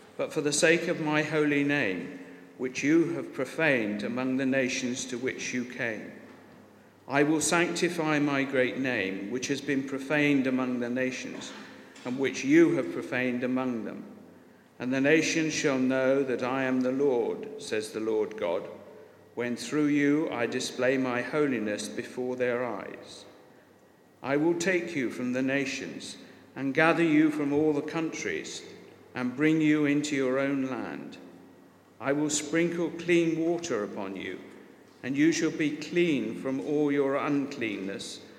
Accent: British